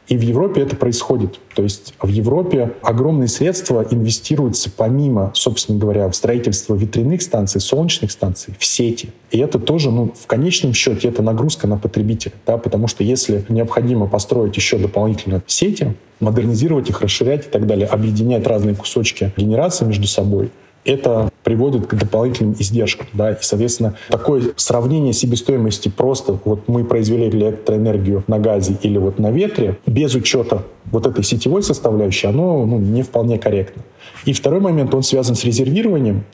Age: 20-39